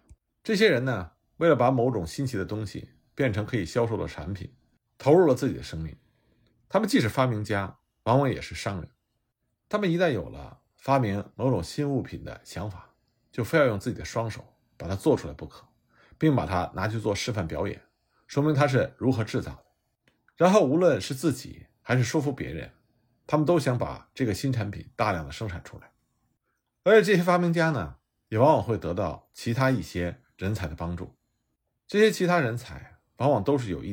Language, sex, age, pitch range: Chinese, male, 50-69, 95-145 Hz